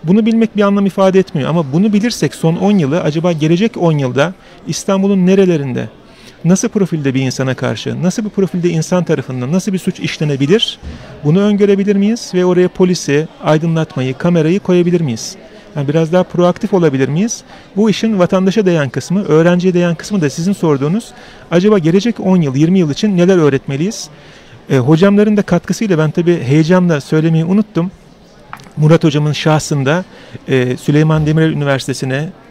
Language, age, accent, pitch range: Turkish, 40-59, native, 150-190 Hz